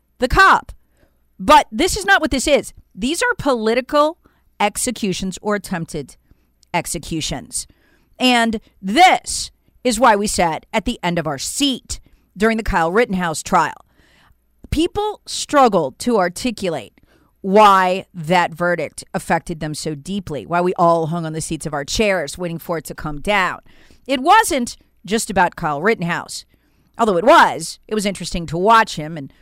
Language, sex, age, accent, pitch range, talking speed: English, female, 40-59, American, 170-245 Hz, 155 wpm